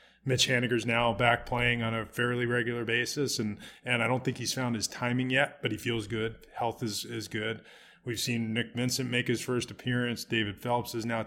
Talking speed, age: 215 wpm, 20-39